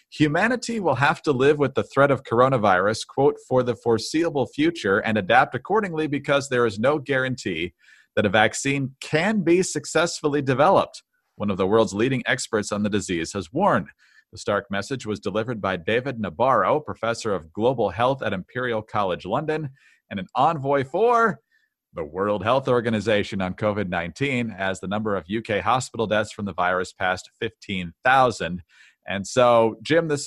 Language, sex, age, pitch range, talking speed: English, male, 40-59, 105-140 Hz, 165 wpm